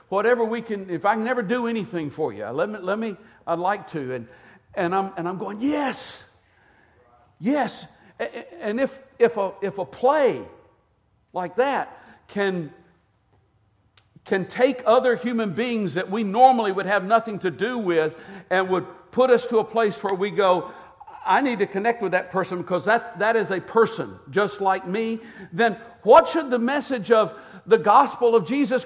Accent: American